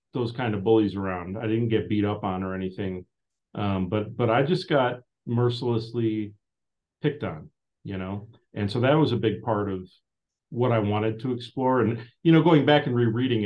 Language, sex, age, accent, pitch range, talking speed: English, male, 40-59, American, 105-125 Hz, 195 wpm